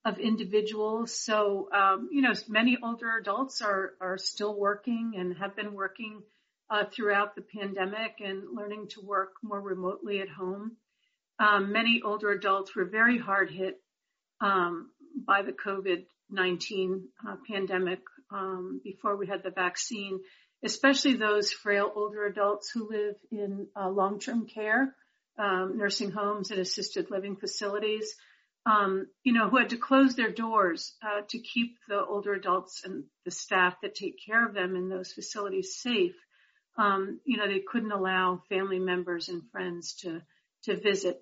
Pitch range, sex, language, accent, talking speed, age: 190-220 Hz, female, English, American, 160 wpm, 50-69